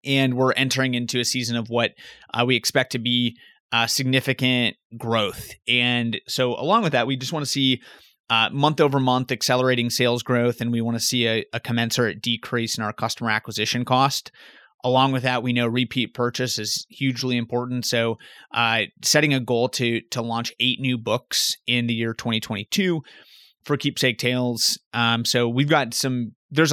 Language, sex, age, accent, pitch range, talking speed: English, male, 30-49, American, 115-130 Hz, 180 wpm